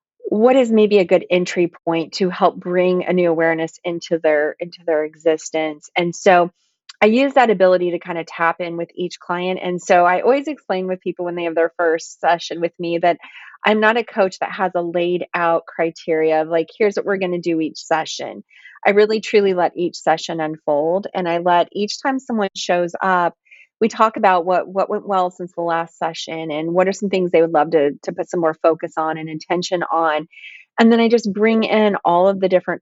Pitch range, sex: 165-195 Hz, female